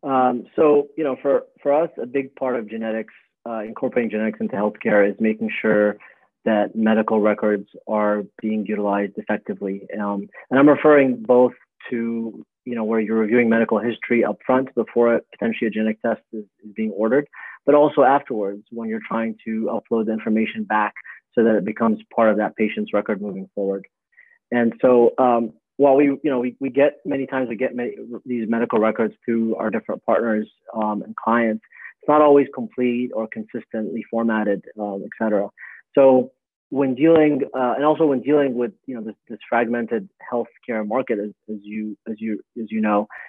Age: 30-49